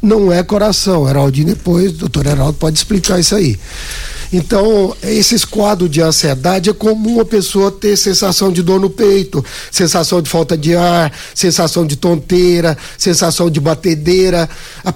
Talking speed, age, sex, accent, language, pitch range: 150 wpm, 60-79, male, Brazilian, Portuguese, 160-200 Hz